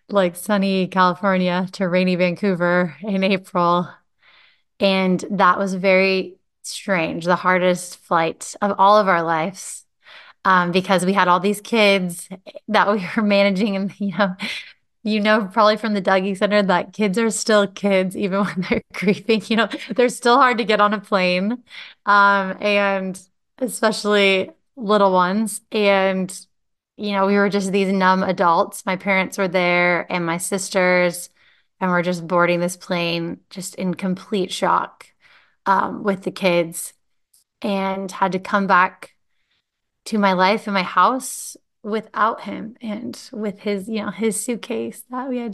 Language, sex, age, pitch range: English, female, 20-39, 185-210 Hz